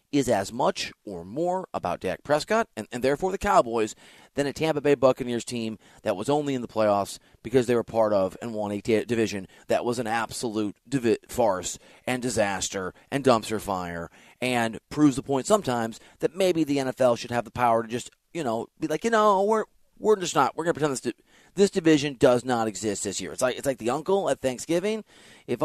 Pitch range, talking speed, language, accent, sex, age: 115-160 Hz, 215 wpm, English, American, male, 30-49